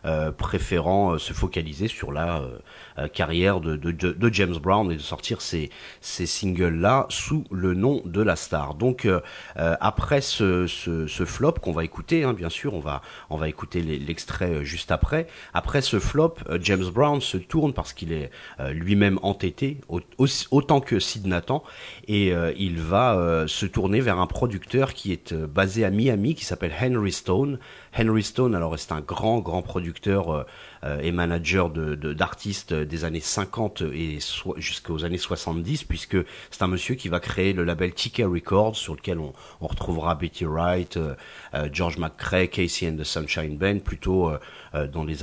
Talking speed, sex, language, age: 180 wpm, male, French, 30-49